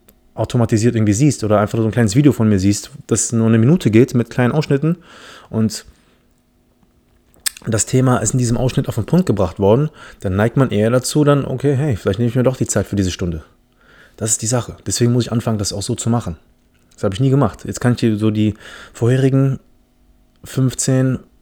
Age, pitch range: 30-49, 105-125 Hz